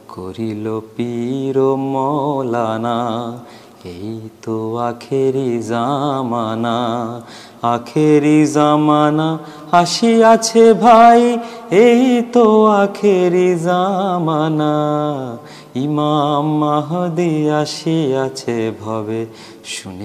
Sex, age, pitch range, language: male, 30-49, 120-180 Hz, Urdu